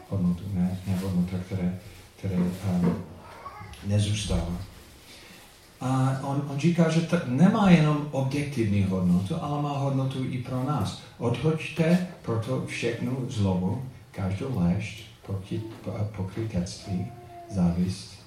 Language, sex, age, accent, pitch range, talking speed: Czech, male, 50-69, native, 95-125 Hz, 100 wpm